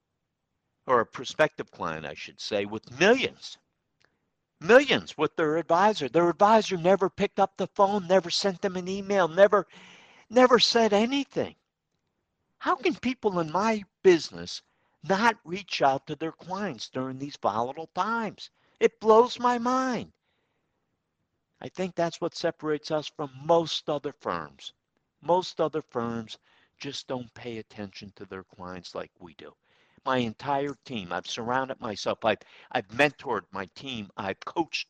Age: 60-79